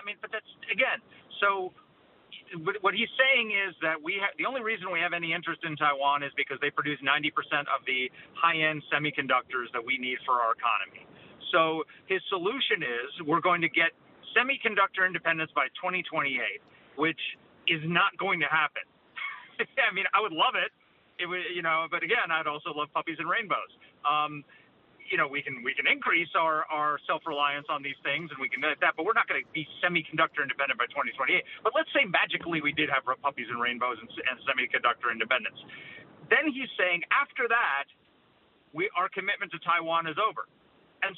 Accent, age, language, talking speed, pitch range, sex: American, 40-59, English, 190 wpm, 150-200 Hz, male